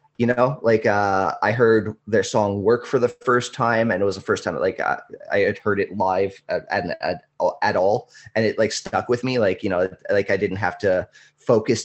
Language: English